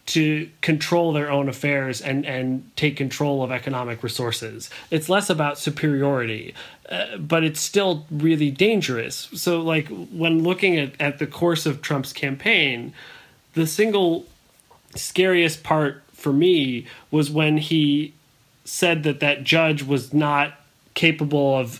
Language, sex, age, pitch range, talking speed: English, male, 30-49, 135-165 Hz, 140 wpm